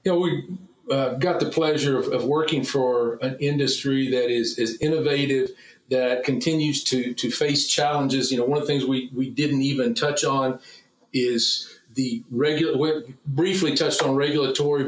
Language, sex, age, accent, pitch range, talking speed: English, male, 40-59, American, 130-155 Hz, 175 wpm